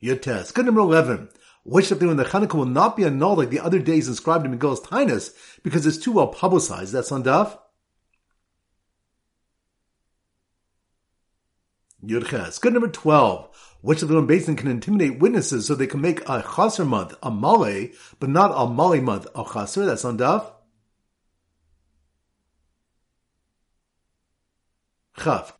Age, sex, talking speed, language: 50-69, male, 145 wpm, English